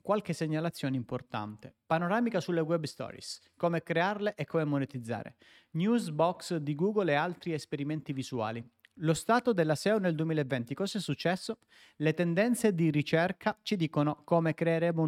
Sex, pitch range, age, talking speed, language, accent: male, 140-185 Hz, 30-49, 145 wpm, Italian, native